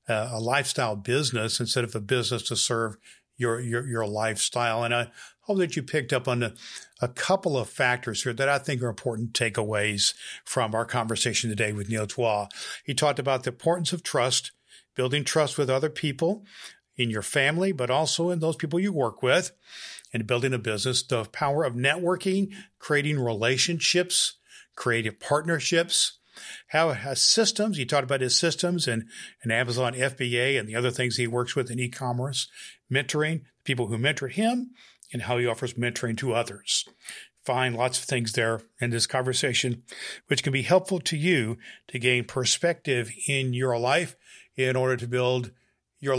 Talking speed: 175 wpm